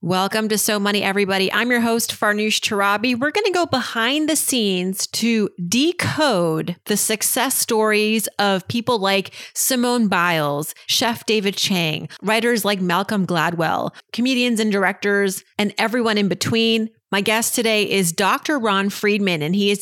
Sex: female